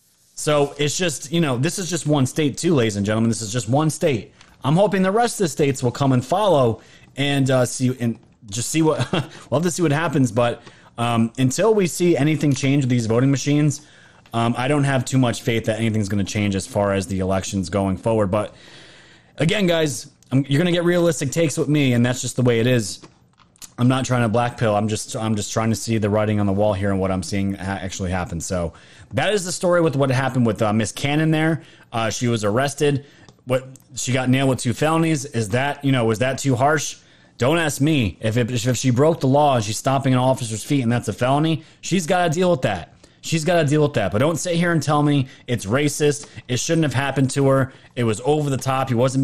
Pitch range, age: 115-150 Hz, 30-49